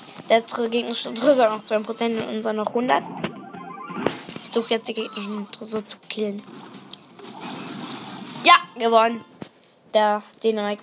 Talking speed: 105 wpm